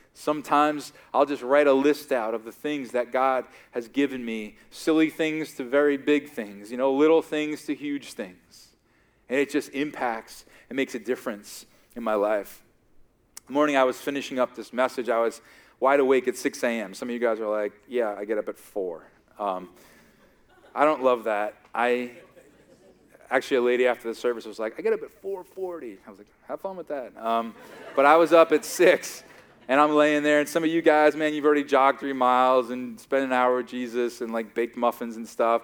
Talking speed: 210 wpm